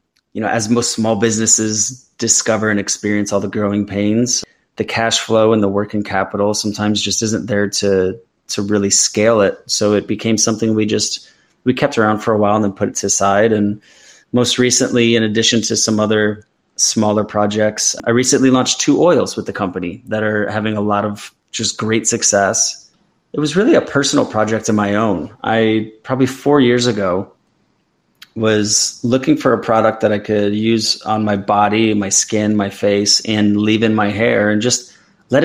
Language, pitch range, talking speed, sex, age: English, 105-115 Hz, 190 wpm, male, 20-39